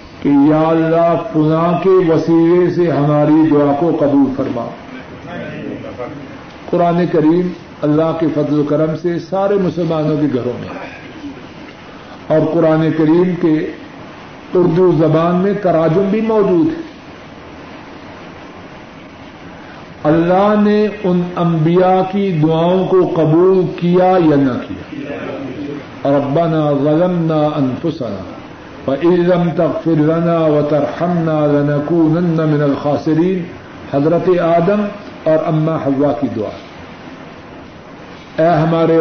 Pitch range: 150-180 Hz